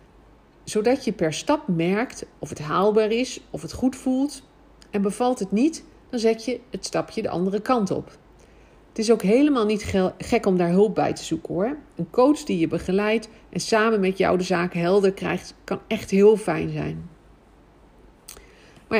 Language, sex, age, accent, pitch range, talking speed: Dutch, female, 50-69, Dutch, 170-220 Hz, 185 wpm